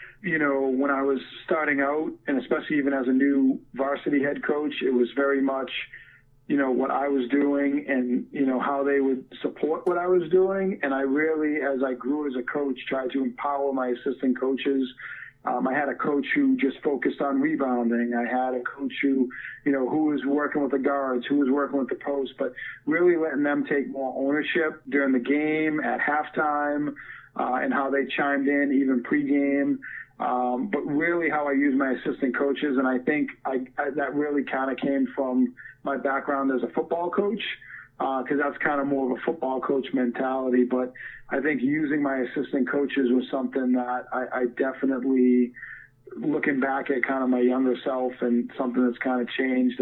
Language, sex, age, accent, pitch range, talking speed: English, male, 40-59, American, 130-145 Hz, 200 wpm